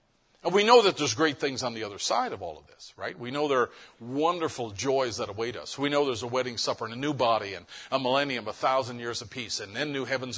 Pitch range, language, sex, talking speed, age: 115-145 Hz, English, male, 265 wpm, 50-69